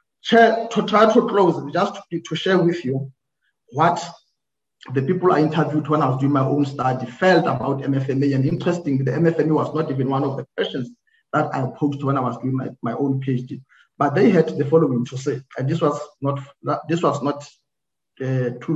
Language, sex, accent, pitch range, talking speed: English, male, South African, 135-165 Hz, 200 wpm